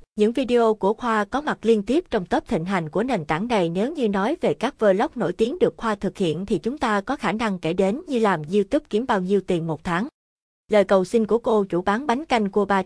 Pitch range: 180-230 Hz